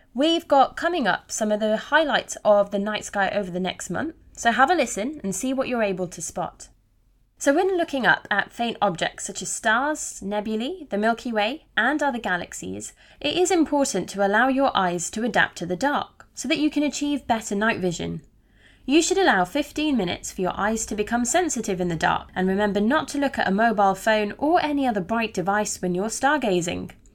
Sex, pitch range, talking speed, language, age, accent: female, 195-275 Hz, 210 wpm, English, 20-39, British